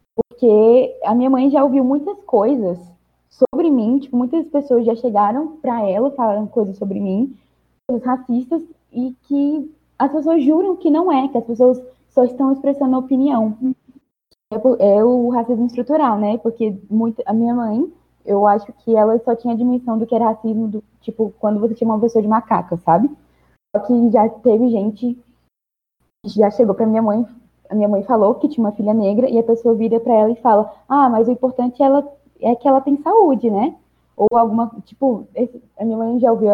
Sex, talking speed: female, 195 wpm